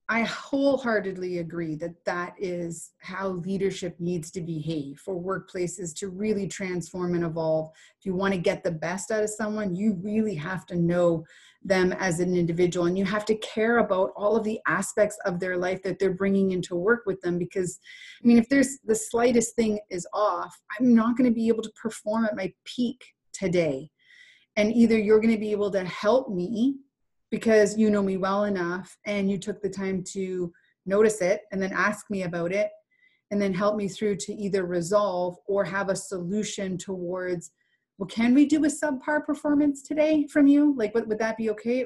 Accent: American